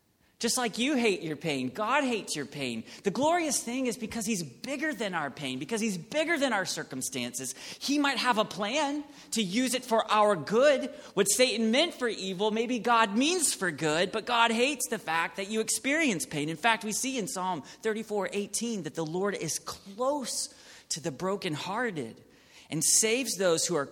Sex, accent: male, American